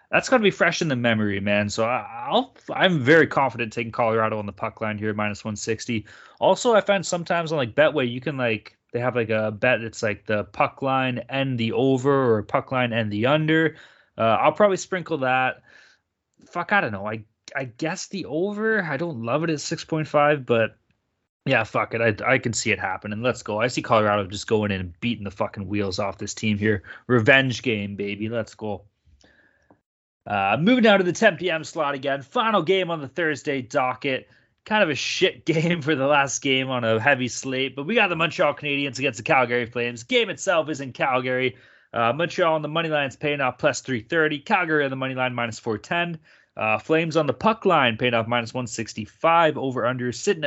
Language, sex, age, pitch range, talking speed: English, male, 20-39, 115-160 Hz, 210 wpm